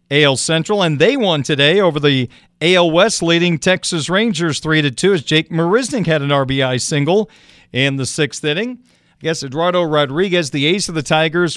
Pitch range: 150-180 Hz